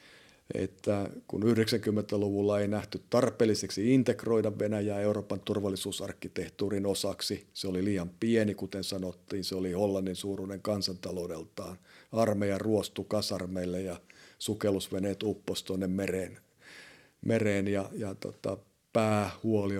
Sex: male